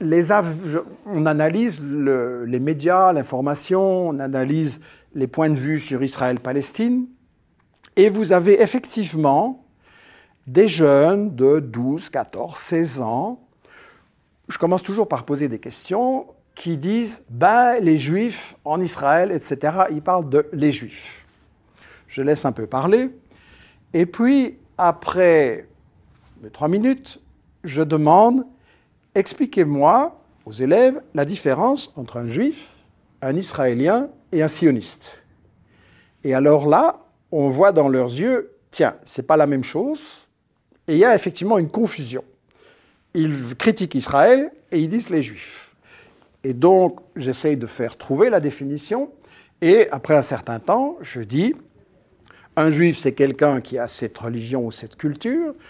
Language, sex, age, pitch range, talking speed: French, male, 50-69, 140-220 Hz, 150 wpm